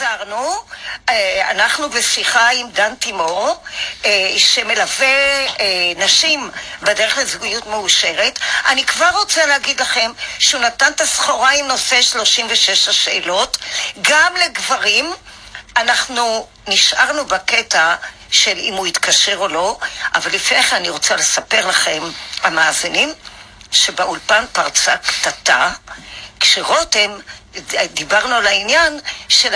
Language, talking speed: Hebrew, 100 wpm